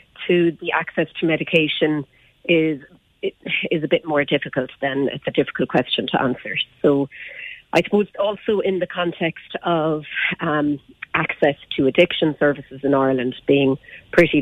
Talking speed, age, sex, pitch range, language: 145 wpm, 40-59, female, 135-160 Hz, English